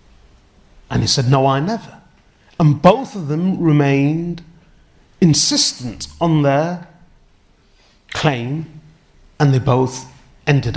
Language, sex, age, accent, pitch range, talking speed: English, male, 30-49, British, 130-170 Hz, 105 wpm